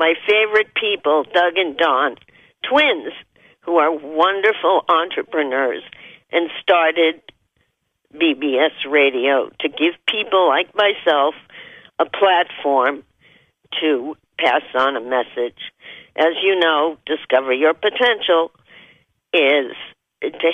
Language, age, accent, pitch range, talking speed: English, 50-69, American, 150-240 Hz, 100 wpm